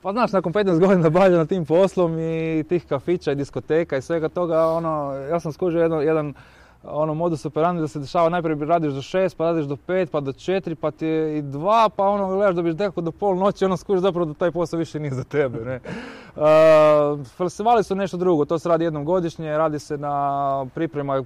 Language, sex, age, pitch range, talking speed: Croatian, male, 20-39, 145-175 Hz, 210 wpm